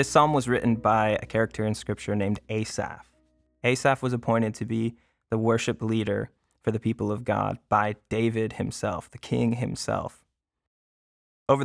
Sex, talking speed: male, 160 wpm